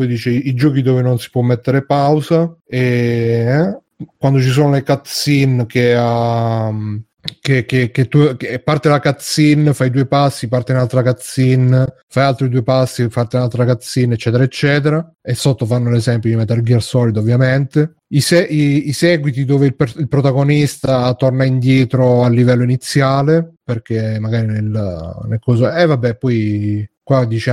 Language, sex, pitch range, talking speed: Italian, male, 115-140 Hz, 160 wpm